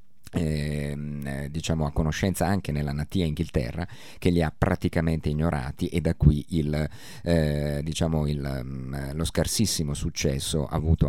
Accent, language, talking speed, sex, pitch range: native, Italian, 120 wpm, male, 75-90 Hz